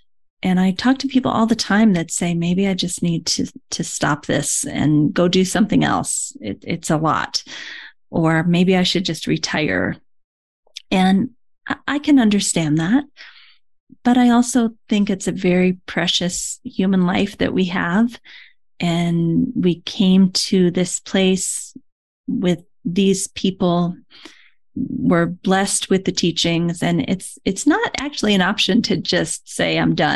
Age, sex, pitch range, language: 30-49, female, 170-210 Hz, English